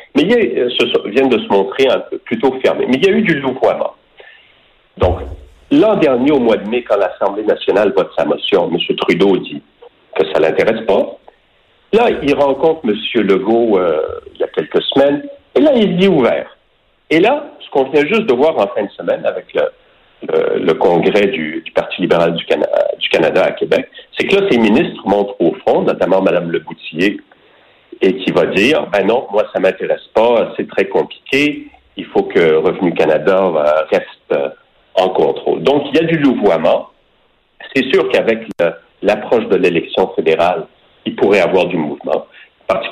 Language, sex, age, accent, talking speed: French, male, 50-69, French, 195 wpm